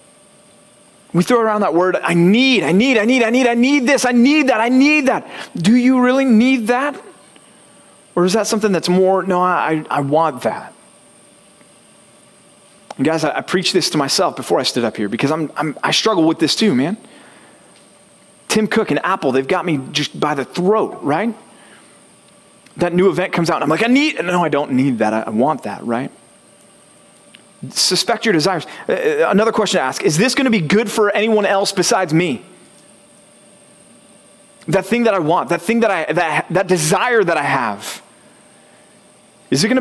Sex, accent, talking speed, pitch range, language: male, American, 195 wpm, 165-225 Hz, English